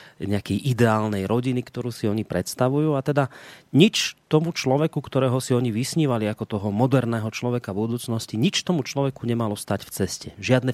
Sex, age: male, 30-49